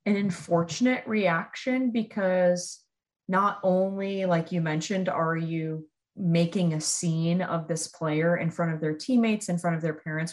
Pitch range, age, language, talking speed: 160-185 Hz, 30-49, English, 155 wpm